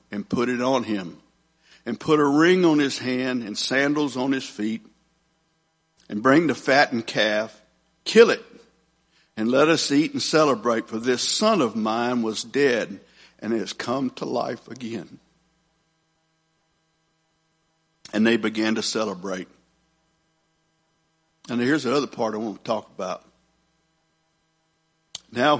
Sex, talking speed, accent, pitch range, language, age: male, 140 wpm, American, 130-160 Hz, English, 60-79